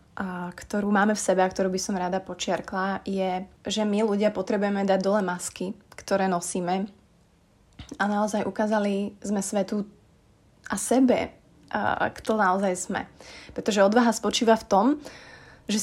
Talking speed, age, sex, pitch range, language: 145 wpm, 20-39, female, 185-215 Hz, Slovak